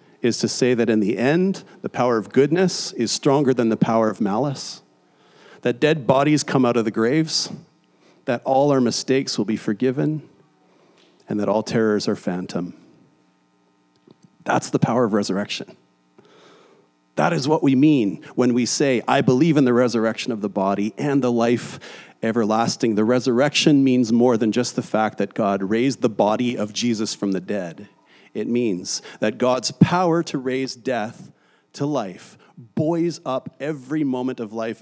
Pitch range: 105-140 Hz